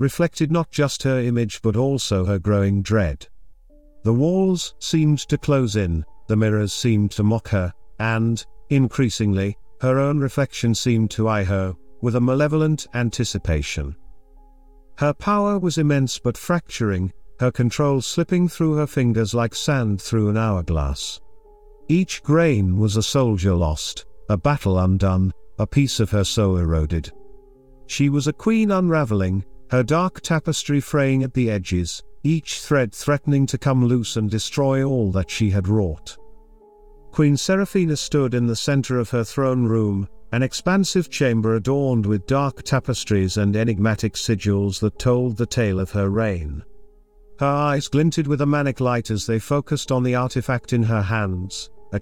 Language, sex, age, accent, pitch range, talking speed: English, male, 50-69, British, 105-145 Hz, 155 wpm